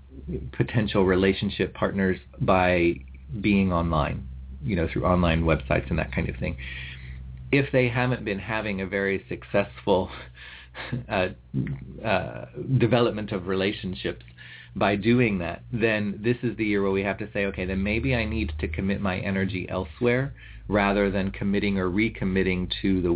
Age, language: 40-59, English